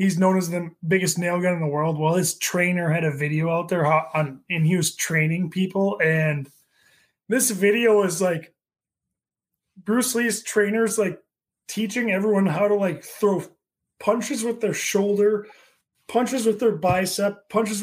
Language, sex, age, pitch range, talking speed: English, male, 20-39, 185-235 Hz, 160 wpm